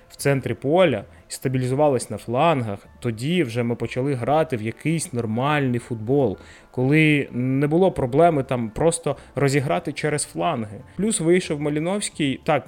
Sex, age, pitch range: male, 20-39, 125-155 Hz